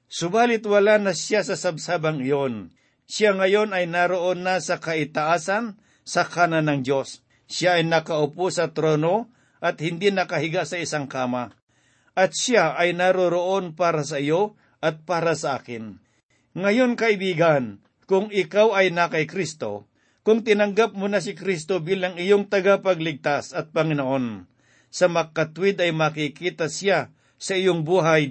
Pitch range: 150-190 Hz